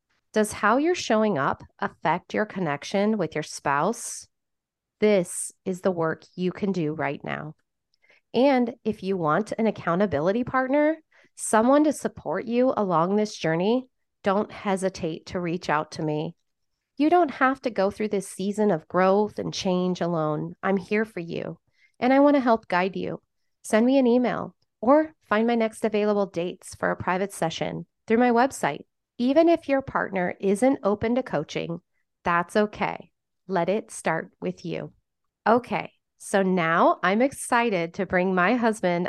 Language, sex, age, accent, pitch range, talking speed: English, female, 30-49, American, 180-240 Hz, 165 wpm